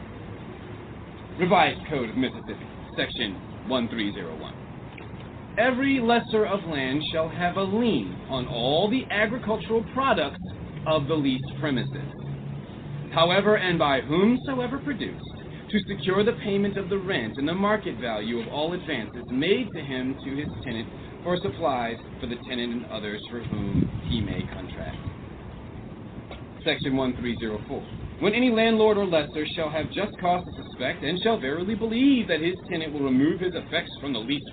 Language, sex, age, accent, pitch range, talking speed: English, male, 40-59, American, 125-200 Hz, 150 wpm